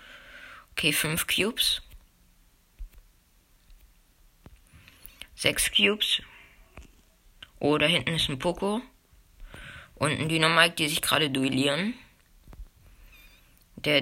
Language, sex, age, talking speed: German, female, 20-39, 80 wpm